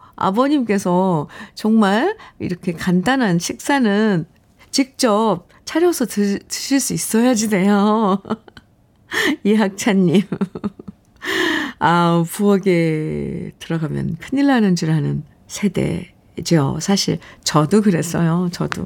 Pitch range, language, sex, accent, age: 170-235 Hz, Korean, female, native, 50-69